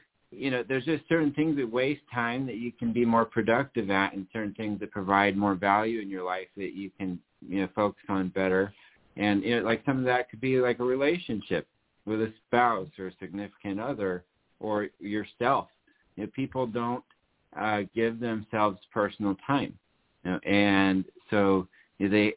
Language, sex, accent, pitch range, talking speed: English, male, American, 95-110 Hz, 180 wpm